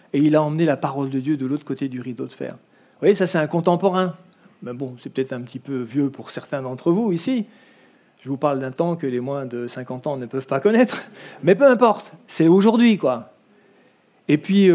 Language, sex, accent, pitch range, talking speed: French, male, French, 145-190 Hz, 230 wpm